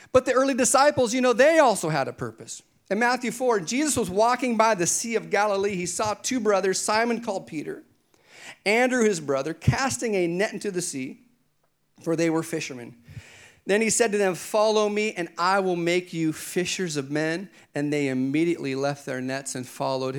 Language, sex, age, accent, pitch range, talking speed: English, male, 40-59, American, 140-205 Hz, 195 wpm